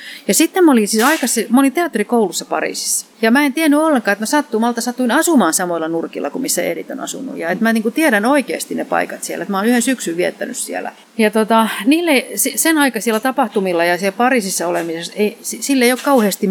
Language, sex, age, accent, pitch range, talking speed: Finnish, female, 40-59, native, 190-255 Hz, 205 wpm